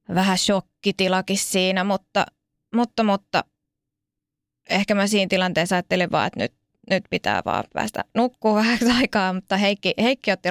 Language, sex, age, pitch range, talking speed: Finnish, female, 20-39, 185-215 Hz, 145 wpm